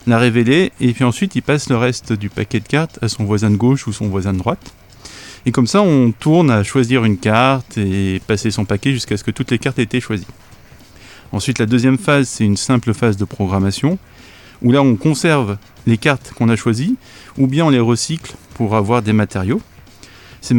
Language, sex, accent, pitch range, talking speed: French, male, French, 105-130 Hz, 215 wpm